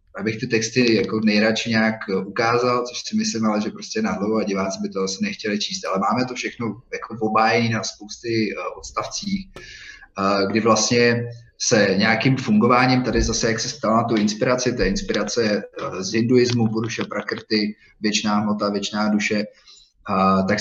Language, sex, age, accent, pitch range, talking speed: Czech, male, 30-49, native, 105-120 Hz, 150 wpm